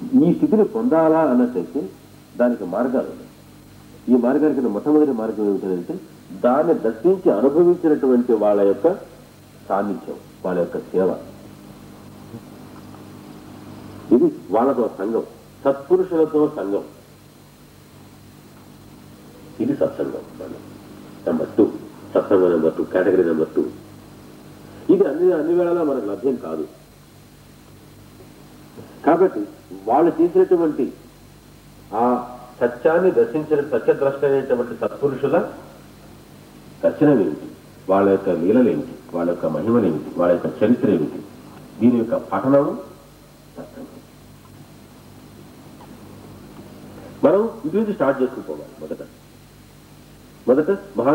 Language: English